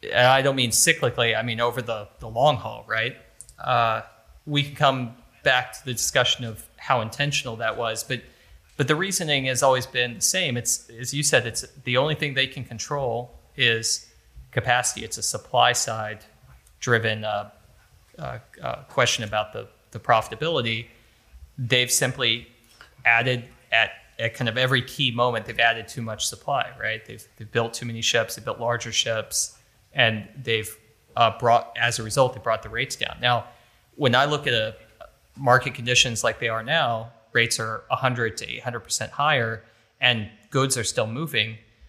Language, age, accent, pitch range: English, 30-49, American, 110-130 Hz